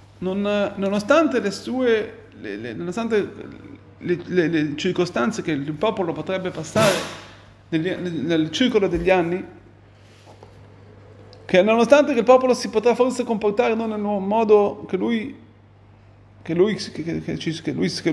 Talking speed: 115 wpm